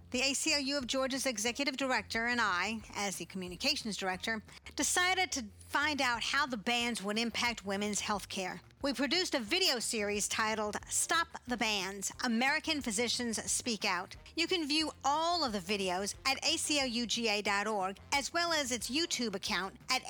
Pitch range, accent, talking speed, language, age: 215-285 Hz, American, 160 wpm, English, 50-69